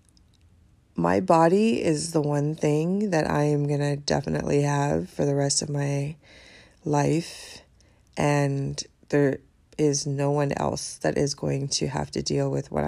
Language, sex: English, female